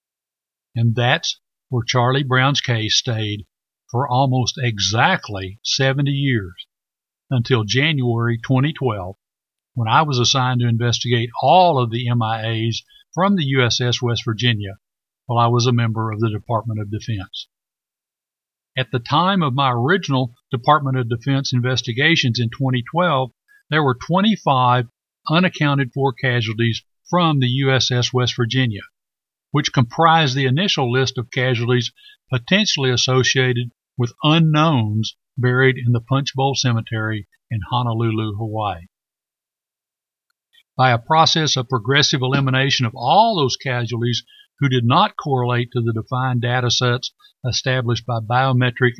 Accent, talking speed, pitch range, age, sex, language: American, 125 wpm, 120-140 Hz, 60-79, male, English